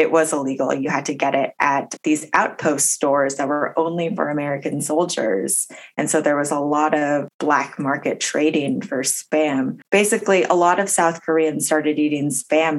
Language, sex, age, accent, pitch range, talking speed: English, female, 20-39, American, 145-170 Hz, 185 wpm